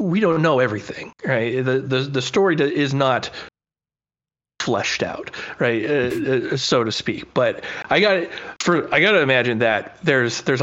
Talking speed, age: 160 wpm, 30-49